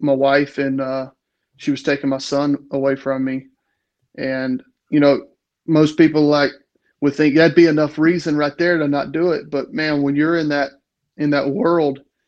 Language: English